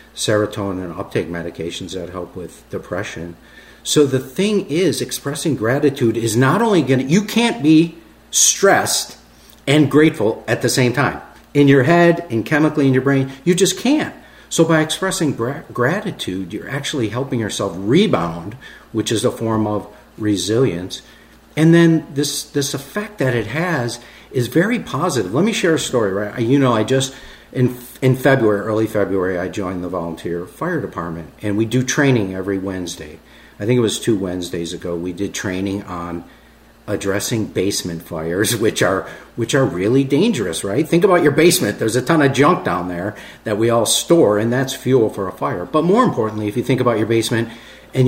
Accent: American